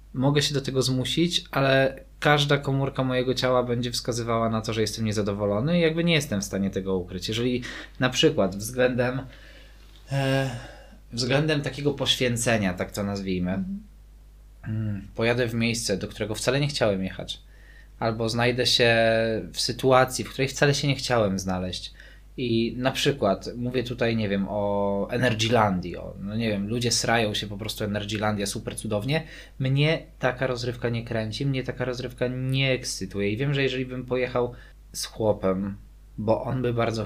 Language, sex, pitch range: Polish, male, 105-135 Hz